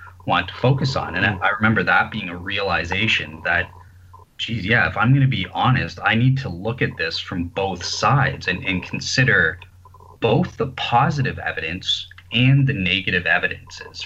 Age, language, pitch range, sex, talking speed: 30-49, English, 90-110 Hz, male, 170 wpm